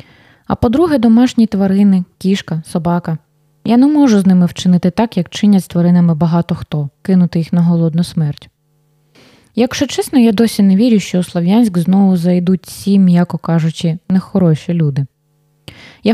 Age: 20-39